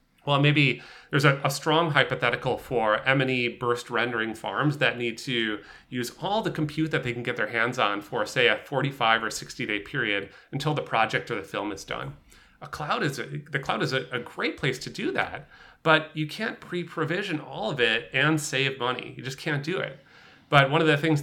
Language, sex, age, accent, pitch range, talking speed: English, male, 30-49, American, 120-150 Hz, 215 wpm